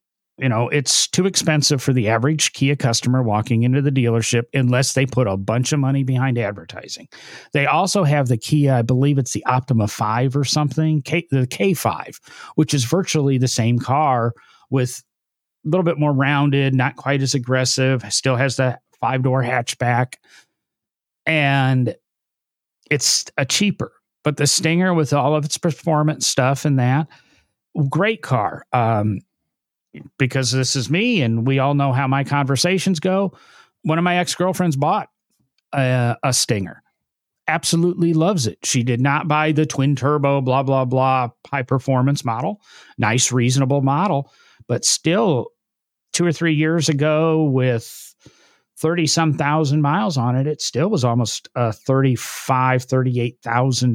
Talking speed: 155 wpm